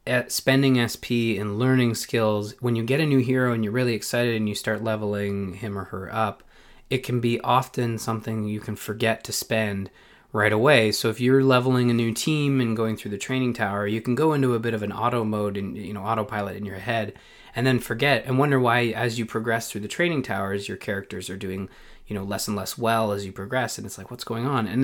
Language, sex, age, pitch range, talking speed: English, male, 20-39, 105-125 Hz, 240 wpm